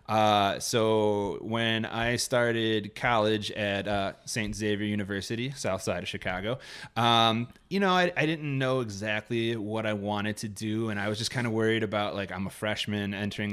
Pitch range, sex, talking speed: 100-115 Hz, male, 180 wpm